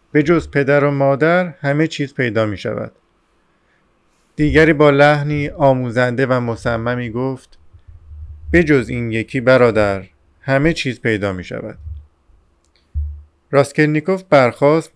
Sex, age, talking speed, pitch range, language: male, 50-69, 110 wpm, 105-130 Hz, Persian